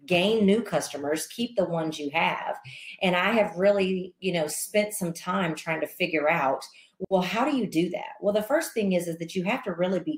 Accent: American